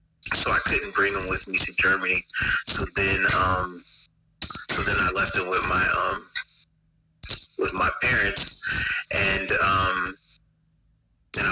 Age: 30-49